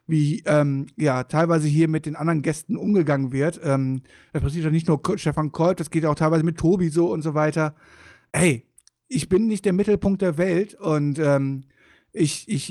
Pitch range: 145-195 Hz